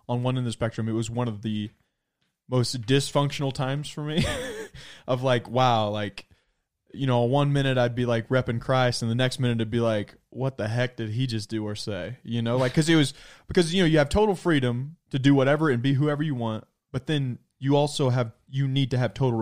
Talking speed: 235 wpm